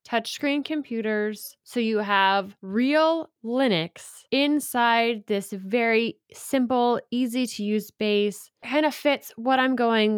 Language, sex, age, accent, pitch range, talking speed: English, female, 20-39, American, 180-225 Hz, 125 wpm